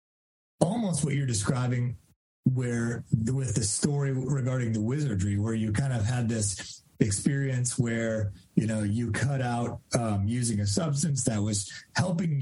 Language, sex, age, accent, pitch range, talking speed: English, male, 30-49, American, 110-145 Hz, 150 wpm